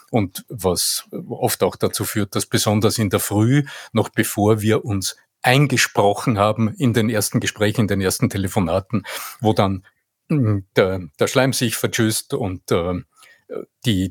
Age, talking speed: 50-69, 150 wpm